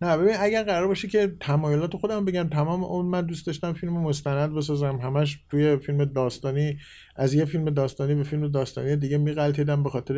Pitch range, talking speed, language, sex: 125-150 Hz, 195 wpm, Persian, male